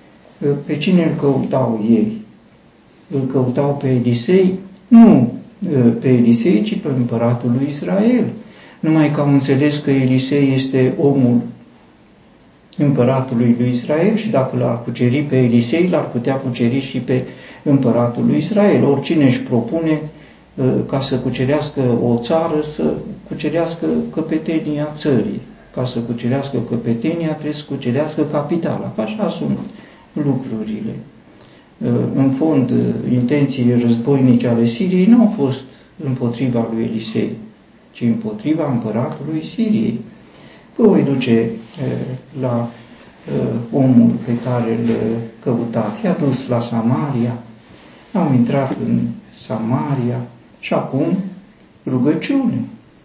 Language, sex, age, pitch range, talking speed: Romanian, male, 50-69, 120-150 Hz, 115 wpm